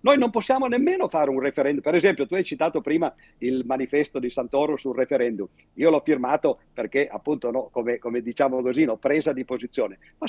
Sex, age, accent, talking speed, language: male, 50-69, Italian, 205 wpm, English